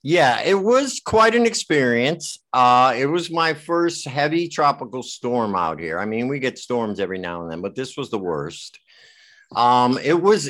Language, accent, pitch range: English, American, 105-150 Hz